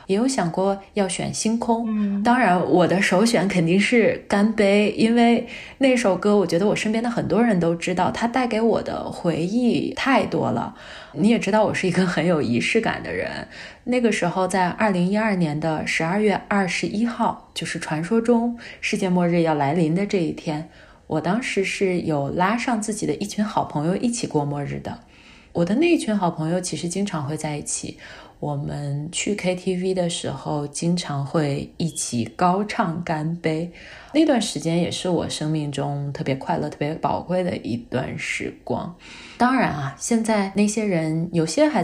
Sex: female